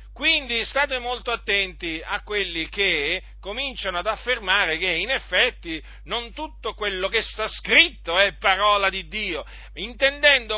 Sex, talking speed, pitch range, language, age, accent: male, 135 wpm, 165-225 Hz, Italian, 40-59, native